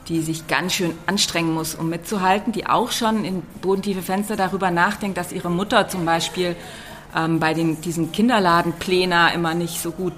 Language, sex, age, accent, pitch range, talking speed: German, female, 40-59, German, 170-205 Hz, 170 wpm